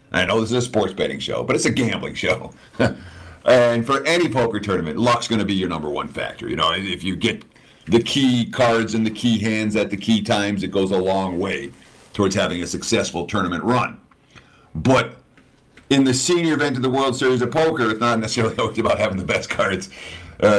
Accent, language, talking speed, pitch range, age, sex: American, English, 215 wpm, 95-120 Hz, 50-69, male